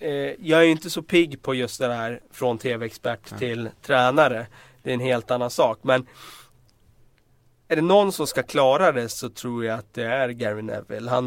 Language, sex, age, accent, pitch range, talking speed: Swedish, male, 30-49, native, 110-130 Hz, 195 wpm